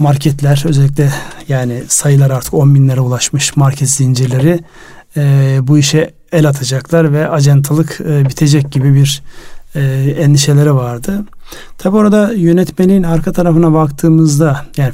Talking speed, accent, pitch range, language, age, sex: 125 wpm, native, 140-165 Hz, Turkish, 40-59, male